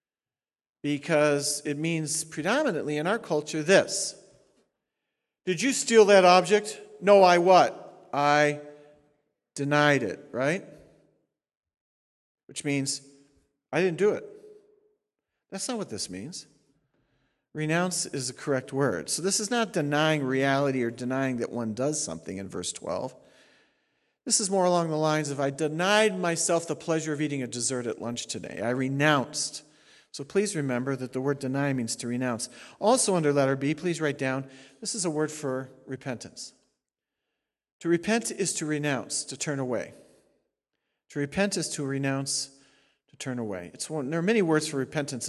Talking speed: 155 wpm